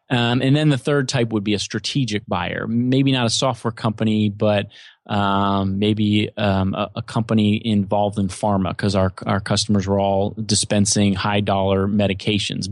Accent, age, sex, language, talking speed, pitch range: American, 30-49, male, English, 170 wpm, 100-115 Hz